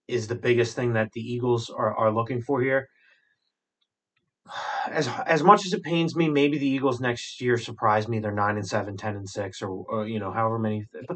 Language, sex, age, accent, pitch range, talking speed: English, male, 30-49, American, 110-145 Hz, 215 wpm